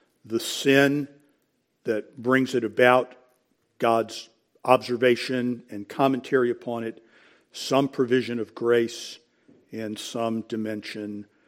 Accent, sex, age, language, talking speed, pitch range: American, male, 50-69, English, 100 wpm, 110-130 Hz